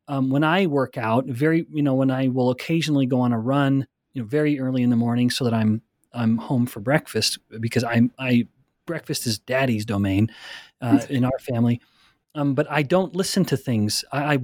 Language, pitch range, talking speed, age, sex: English, 125-155 Hz, 210 wpm, 30-49, male